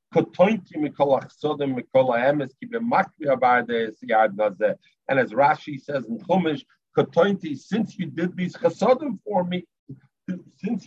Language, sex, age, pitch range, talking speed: English, male, 50-69, 135-185 Hz, 90 wpm